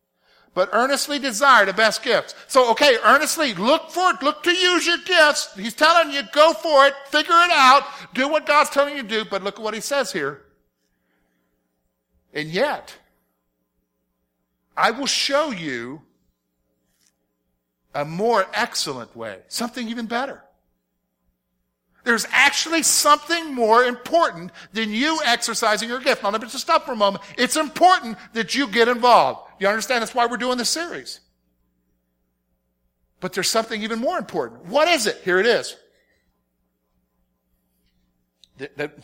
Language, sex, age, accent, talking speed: English, male, 50-69, American, 150 wpm